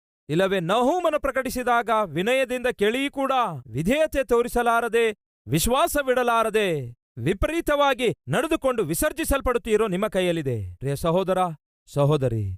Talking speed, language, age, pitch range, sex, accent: 75 wpm, Kannada, 40-59, 120-195 Hz, male, native